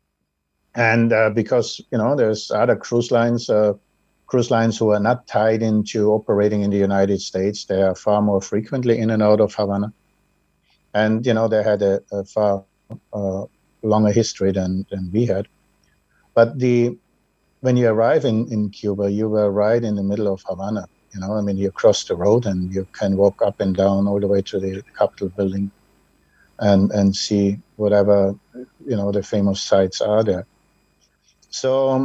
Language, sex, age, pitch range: English, male, 60-79, 100-120 Hz